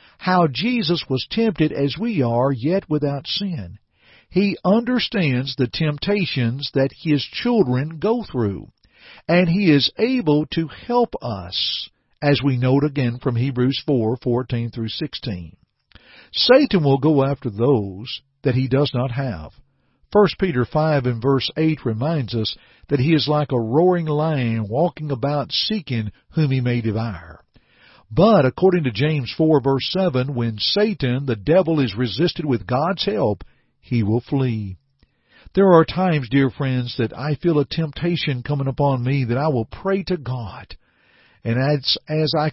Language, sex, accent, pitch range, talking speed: English, male, American, 120-160 Hz, 155 wpm